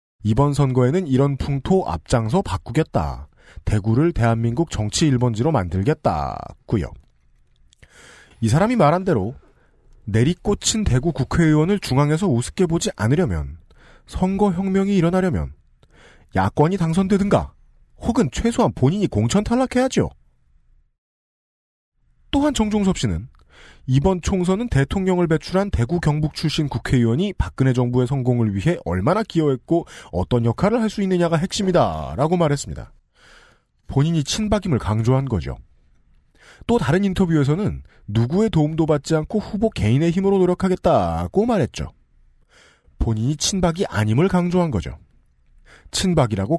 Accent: native